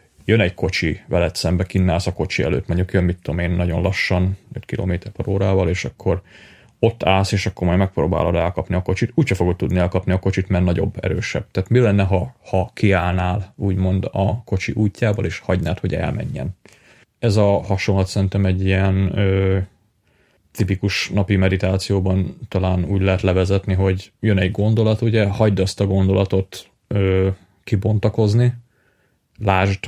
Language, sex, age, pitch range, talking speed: Hungarian, male, 30-49, 95-105 Hz, 160 wpm